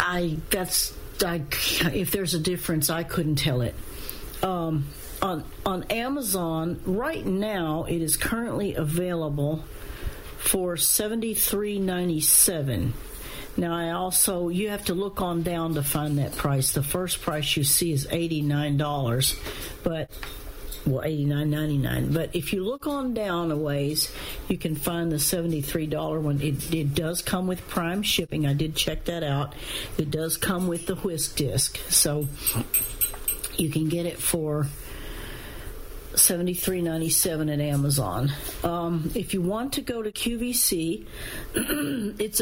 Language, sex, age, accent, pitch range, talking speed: English, female, 60-79, American, 145-180 Hz, 155 wpm